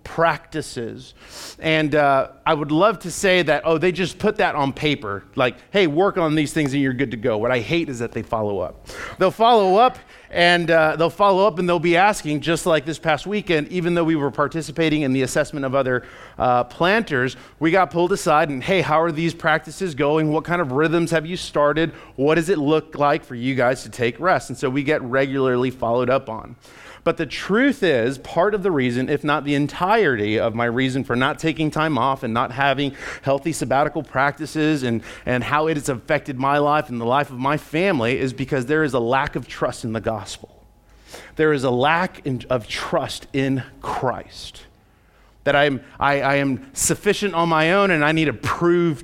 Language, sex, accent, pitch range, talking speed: English, male, American, 130-160 Hz, 215 wpm